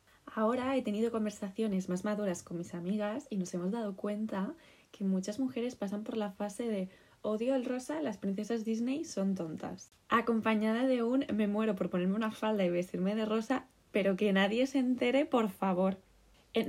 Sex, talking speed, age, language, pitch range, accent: female, 185 wpm, 20-39, Spanish, 190-225 Hz, Spanish